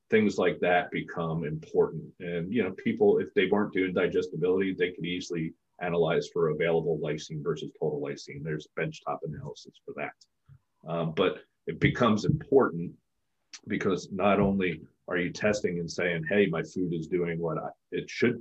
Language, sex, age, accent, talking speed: English, male, 40-59, American, 165 wpm